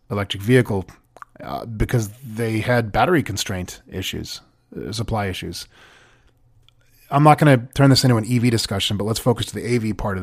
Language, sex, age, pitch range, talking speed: English, male, 30-49, 100-130 Hz, 175 wpm